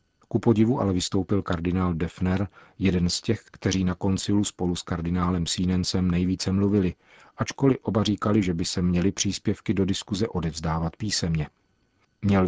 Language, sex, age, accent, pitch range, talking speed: Czech, male, 40-59, native, 85-100 Hz, 150 wpm